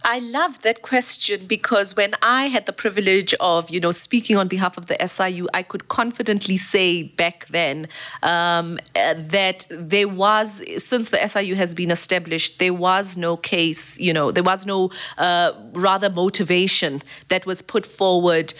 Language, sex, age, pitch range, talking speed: English, female, 30-49, 170-205 Hz, 170 wpm